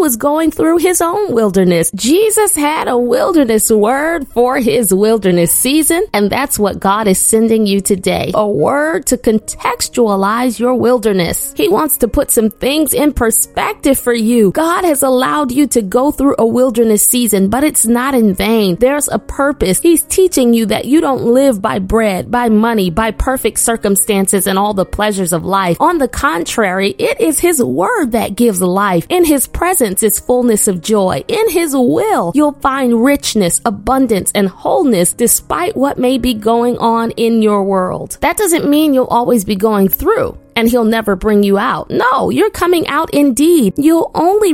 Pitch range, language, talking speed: 215-290 Hz, English, 180 wpm